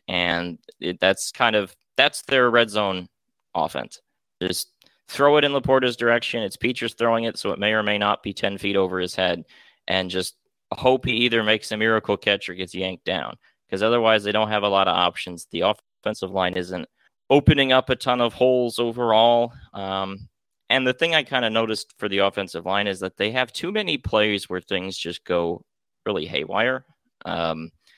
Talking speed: 195 wpm